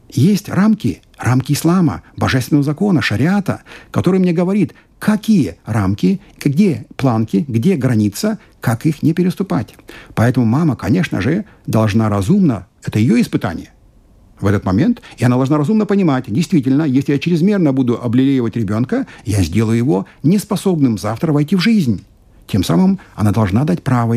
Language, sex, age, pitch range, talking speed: Russian, male, 60-79, 110-155 Hz, 145 wpm